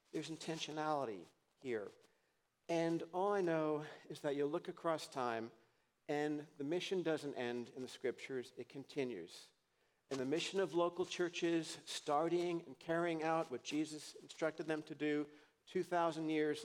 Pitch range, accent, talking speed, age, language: 145-175 Hz, American, 150 wpm, 50-69, English